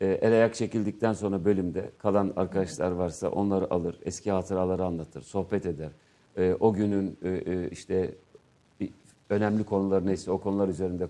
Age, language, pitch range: 50-69, Turkish, 90-115 Hz